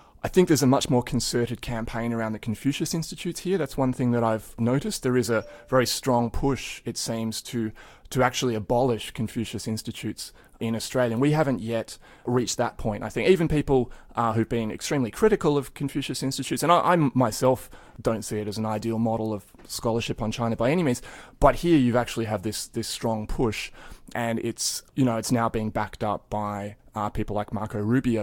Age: 20-39